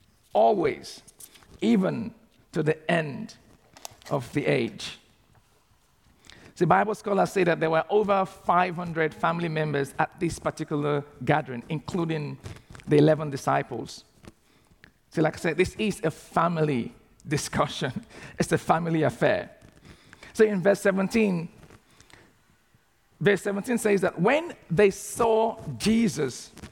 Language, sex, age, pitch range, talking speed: English, male, 50-69, 150-215 Hz, 115 wpm